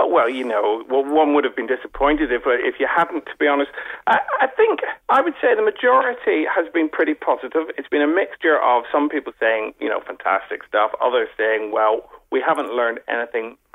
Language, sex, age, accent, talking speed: English, male, 40-59, British, 205 wpm